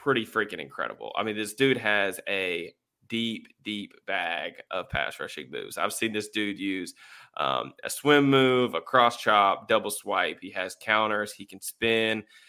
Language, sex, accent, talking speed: English, male, American, 175 wpm